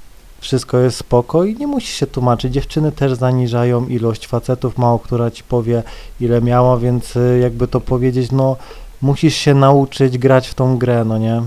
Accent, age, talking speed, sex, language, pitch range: native, 20-39, 175 wpm, male, Polish, 120-135 Hz